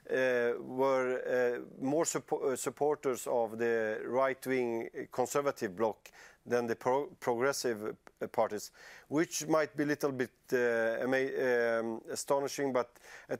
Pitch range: 120-150 Hz